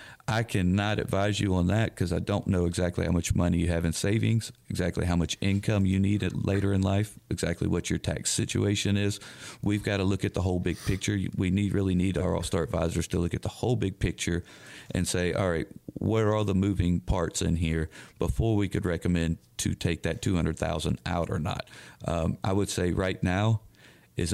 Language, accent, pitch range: English, American, 90-105 Hz